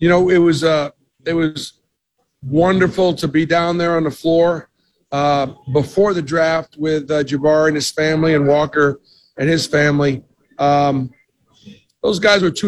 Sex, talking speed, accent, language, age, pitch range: male, 165 wpm, American, English, 50-69, 150-180 Hz